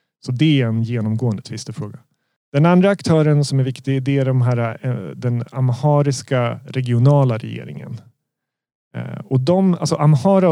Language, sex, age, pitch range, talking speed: Swedish, male, 30-49, 115-145 Hz, 130 wpm